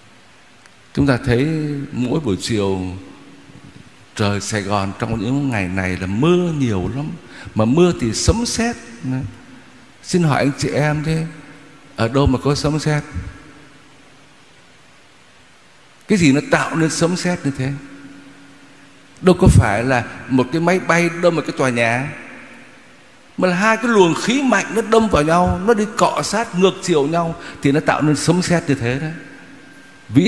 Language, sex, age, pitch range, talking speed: Vietnamese, male, 60-79, 115-165 Hz, 165 wpm